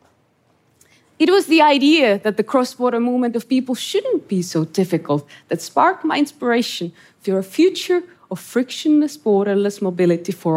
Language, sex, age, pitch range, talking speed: English, female, 20-39, 205-305 Hz, 150 wpm